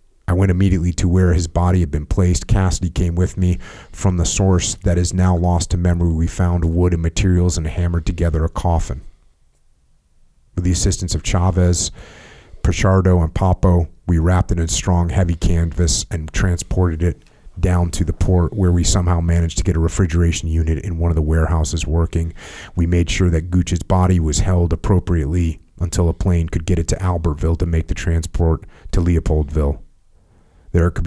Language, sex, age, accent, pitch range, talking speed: English, male, 30-49, American, 80-90 Hz, 185 wpm